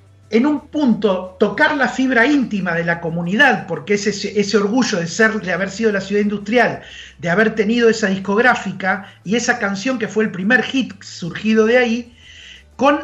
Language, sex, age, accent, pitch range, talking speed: Spanish, male, 40-59, Argentinian, 190-245 Hz, 180 wpm